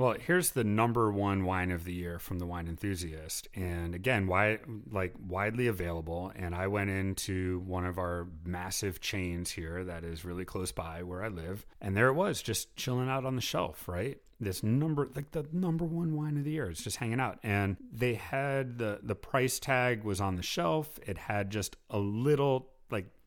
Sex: male